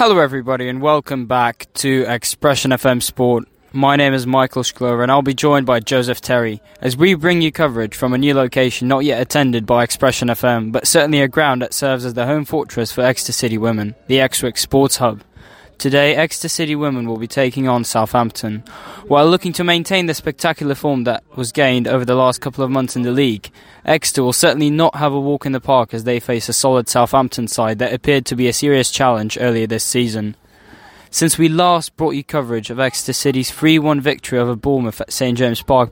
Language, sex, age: English, male, 10-29